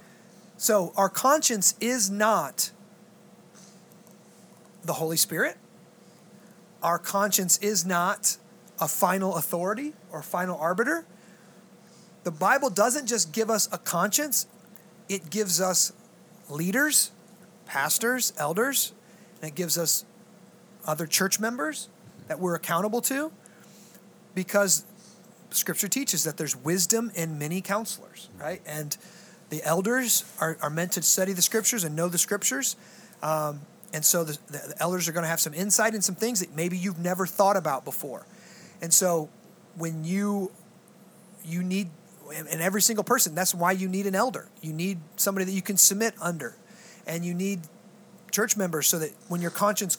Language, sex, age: English, male, 30-49